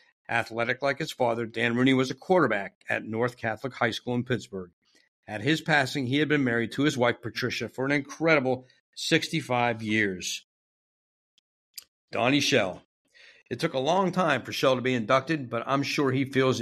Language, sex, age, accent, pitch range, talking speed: English, male, 50-69, American, 110-140 Hz, 175 wpm